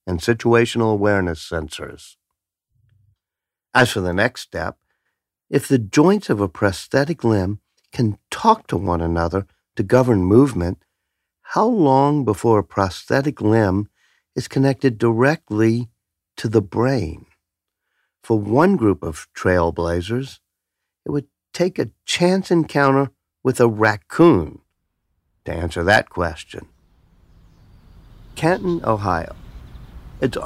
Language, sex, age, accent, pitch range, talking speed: English, male, 50-69, American, 95-140 Hz, 110 wpm